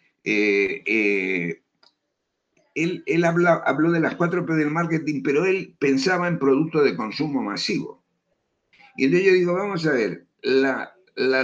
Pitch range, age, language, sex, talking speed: 125-175 Hz, 60-79, Spanish, male, 150 wpm